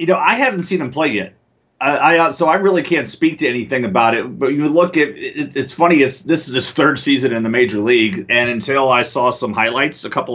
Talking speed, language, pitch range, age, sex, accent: 250 wpm, English, 120-170 Hz, 30-49, male, American